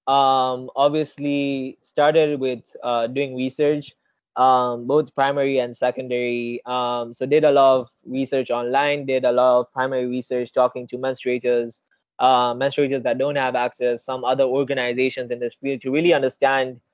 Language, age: English, 20-39